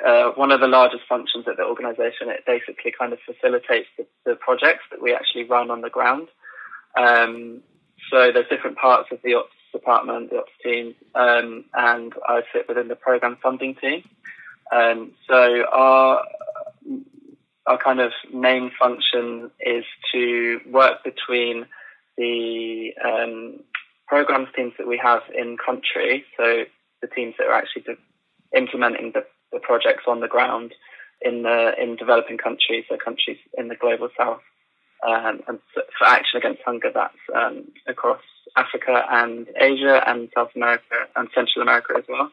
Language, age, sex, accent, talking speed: English, 20-39, male, British, 155 wpm